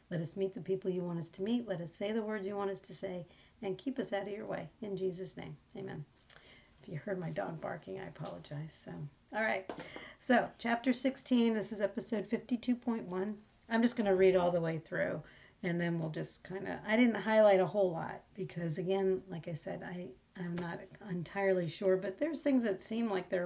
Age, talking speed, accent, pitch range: 40-59, 225 wpm, American, 185-215 Hz